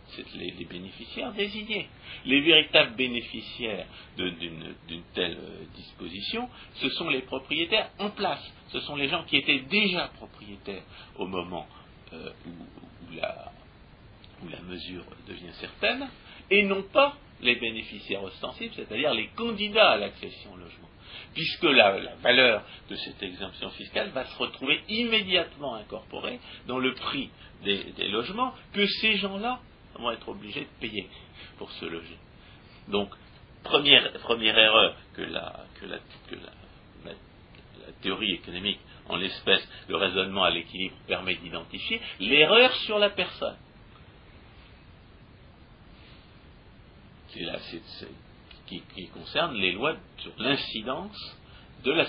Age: 60-79